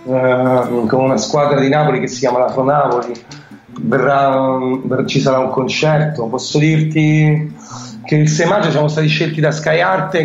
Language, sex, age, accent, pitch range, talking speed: Italian, male, 30-49, native, 145-165 Hz, 165 wpm